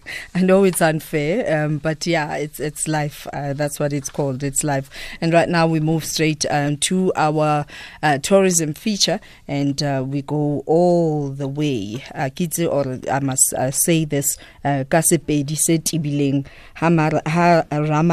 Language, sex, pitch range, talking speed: English, female, 140-160 Hz, 140 wpm